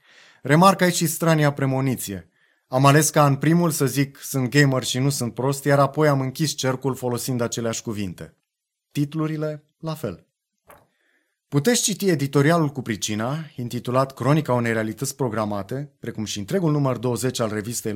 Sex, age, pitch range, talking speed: male, 30-49, 110-145 Hz, 155 wpm